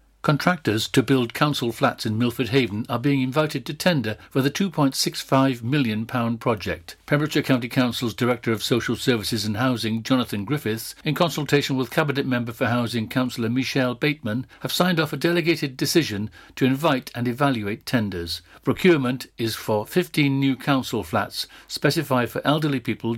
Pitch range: 115-140 Hz